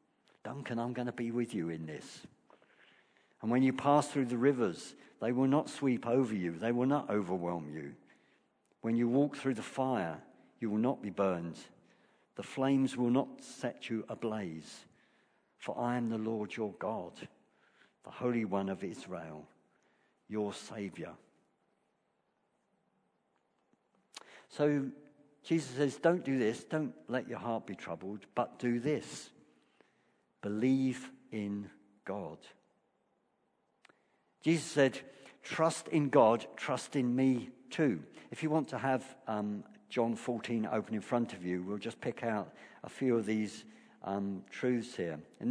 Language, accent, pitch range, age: English, British, 105-135 Hz, 60-79